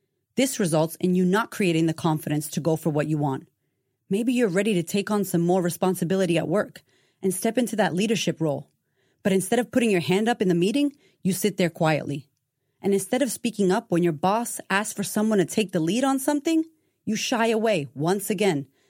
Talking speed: 215 wpm